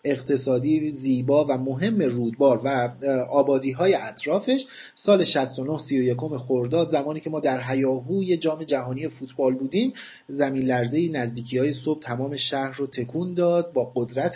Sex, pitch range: male, 130-165 Hz